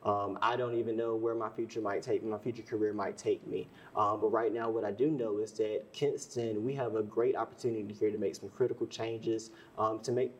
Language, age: English, 20-39